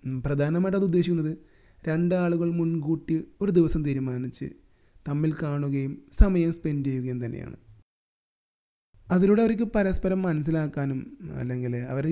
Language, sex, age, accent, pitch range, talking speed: Malayalam, male, 30-49, native, 115-160 Hz, 100 wpm